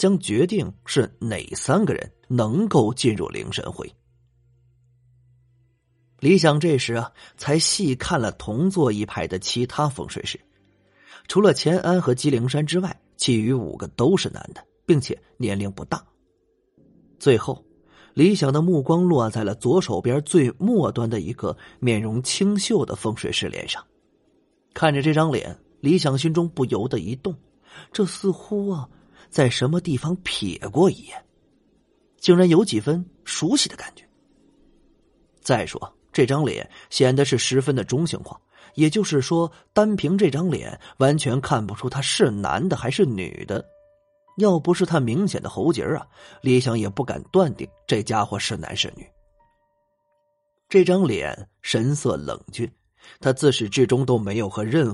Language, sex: Chinese, male